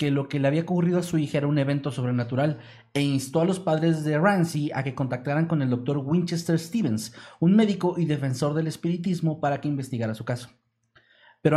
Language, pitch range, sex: Spanish, 130-160 Hz, male